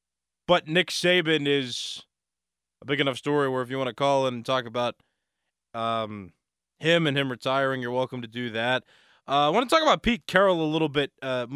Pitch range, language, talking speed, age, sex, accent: 115-145 Hz, English, 200 wpm, 20-39, male, American